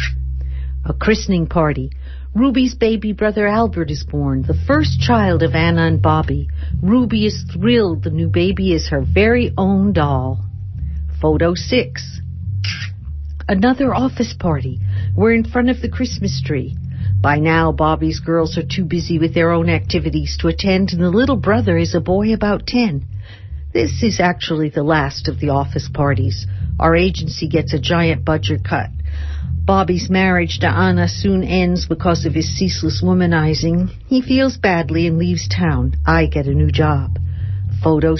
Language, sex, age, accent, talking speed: English, female, 60-79, American, 155 wpm